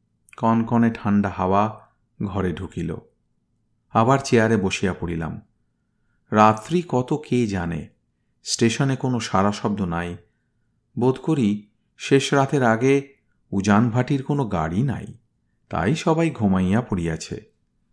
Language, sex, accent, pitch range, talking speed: Bengali, male, native, 100-130 Hz, 105 wpm